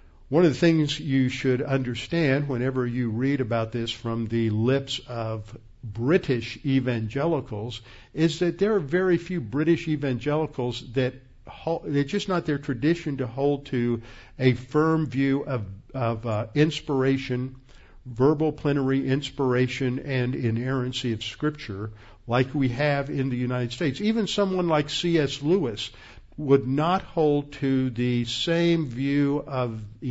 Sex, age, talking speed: male, 50-69, 140 wpm